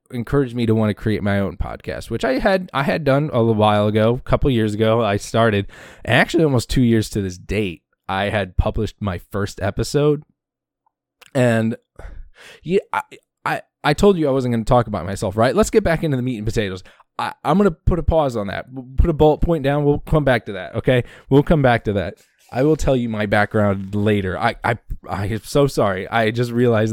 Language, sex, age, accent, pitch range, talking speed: English, male, 20-39, American, 105-135 Hz, 225 wpm